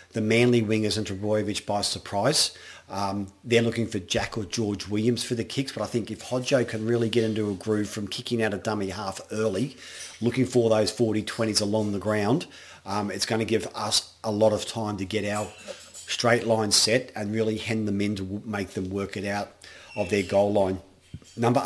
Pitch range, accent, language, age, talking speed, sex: 105-115 Hz, Australian, English, 40-59, 210 wpm, male